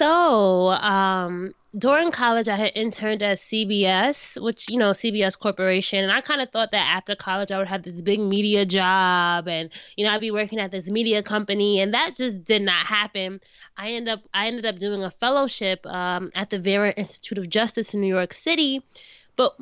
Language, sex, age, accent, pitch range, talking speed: English, female, 20-39, American, 195-230 Hz, 205 wpm